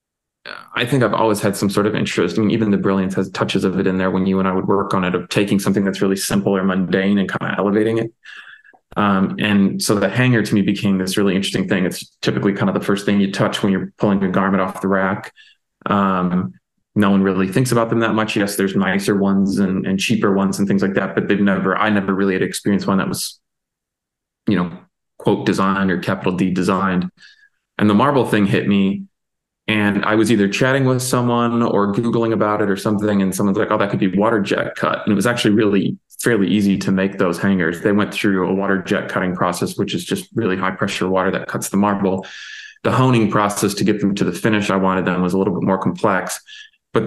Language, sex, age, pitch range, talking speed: English, male, 20-39, 95-105 Hz, 240 wpm